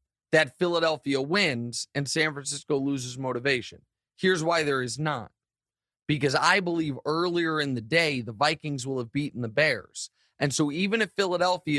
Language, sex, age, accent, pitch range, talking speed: English, male, 30-49, American, 135-175 Hz, 165 wpm